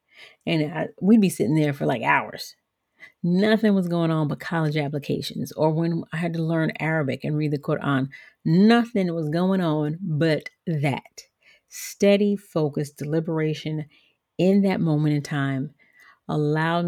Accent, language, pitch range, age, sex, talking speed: American, English, 145-175 Hz, 40-59, female, 145 wpm